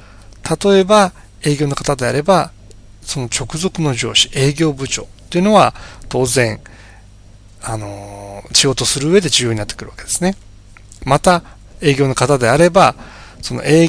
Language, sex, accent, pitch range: Japanese, male, native, 105-165 Hz